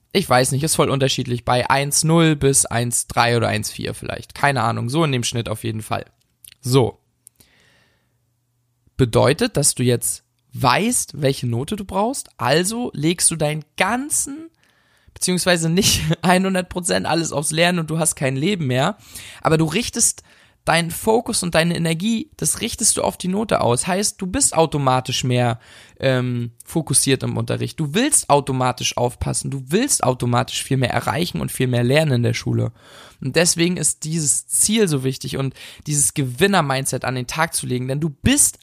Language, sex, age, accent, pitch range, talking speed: German, male, 20-39, German, 120-180 Hz, 170 wpm